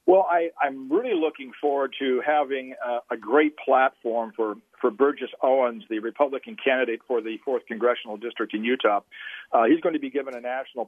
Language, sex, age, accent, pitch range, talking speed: English, male, 50-69, American, 125-155 Hz, 180 wpm